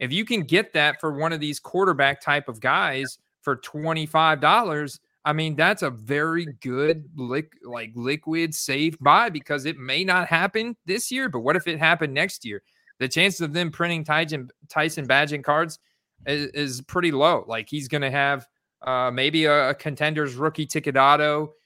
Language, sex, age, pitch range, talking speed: English, male, 30-49, 130-155 Hz, 175 wpm